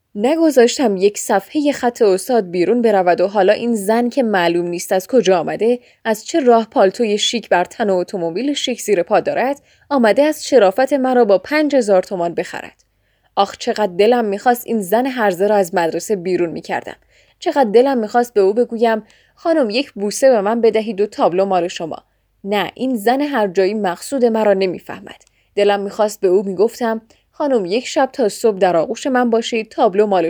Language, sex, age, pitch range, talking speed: Persian, female, 10-29, 195-250 Hz, 180 wpm